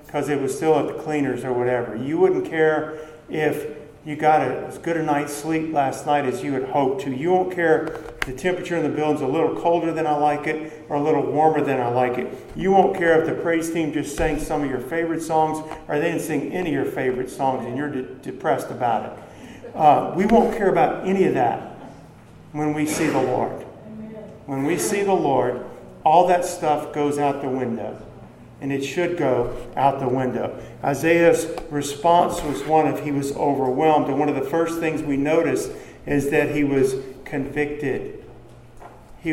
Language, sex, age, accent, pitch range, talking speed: English, male, 50-69, American, 135-160 Hz, 205 wpm